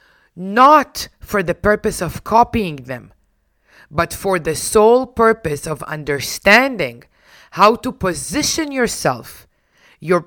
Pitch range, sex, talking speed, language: 135-190 Hz, female, 110 wpm, English